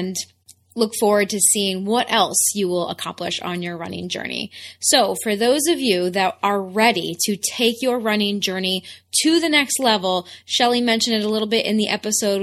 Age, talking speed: 20-39, 195 wpm